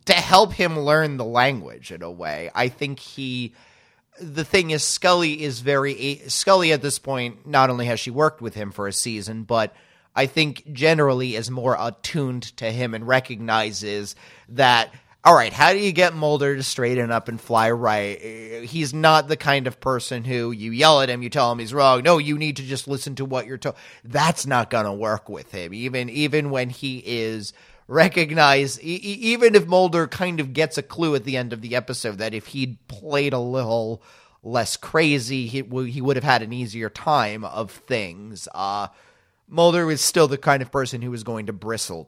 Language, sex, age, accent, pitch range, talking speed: English, male, 30-49, American, 115-150 Hz, 210 wpm